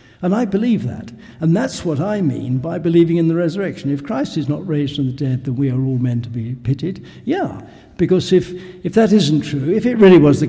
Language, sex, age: English, male, 60-79